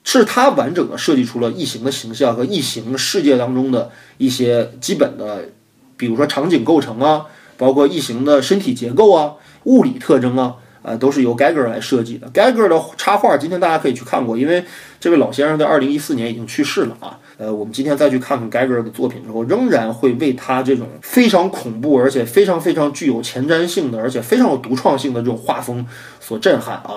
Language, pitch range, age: Chinese, 120-155 Hz, 20-39